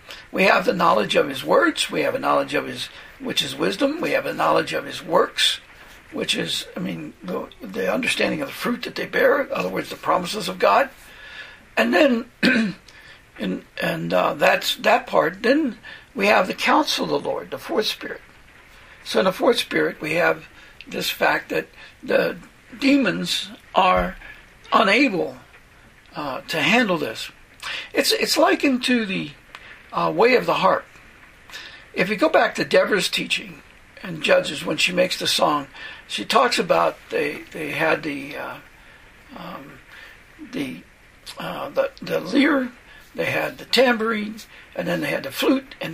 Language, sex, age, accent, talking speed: English, male, 60-79, American, 165 wpm